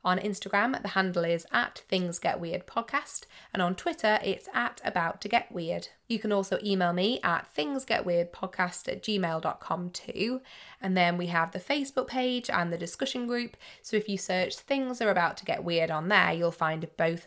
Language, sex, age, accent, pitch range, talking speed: English, female, 20-39, British, 170-210 Hz, 170 wpm